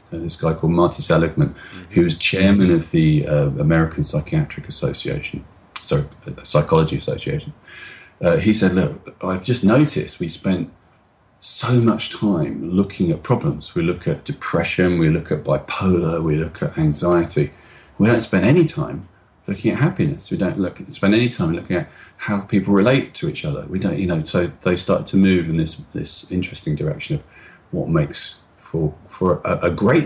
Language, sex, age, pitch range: English, male, 40-59, 90-125 Hz